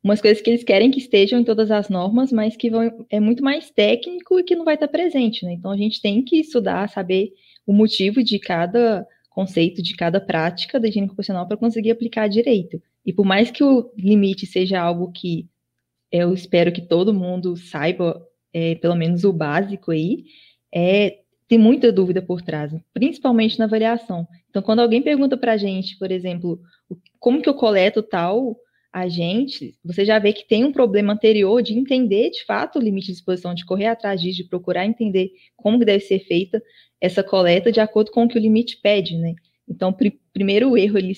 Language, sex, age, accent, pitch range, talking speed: Portuguese, female, 20-39, Brazilian, 185-235 Hz, 205 wpm